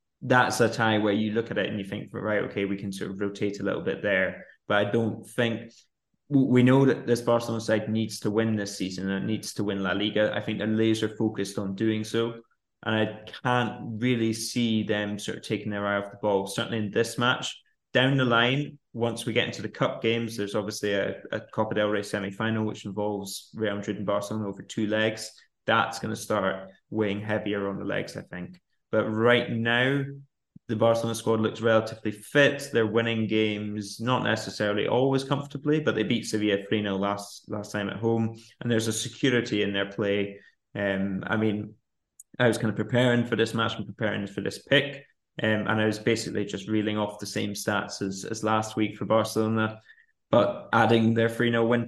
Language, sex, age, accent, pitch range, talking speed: English, male, 20-39, British, 105-115 Hz, 205 wpm